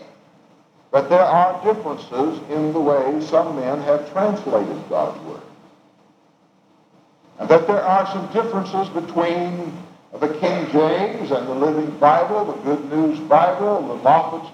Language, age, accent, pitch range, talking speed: English, 60-79, American, 155-200 Hz, 140 wpm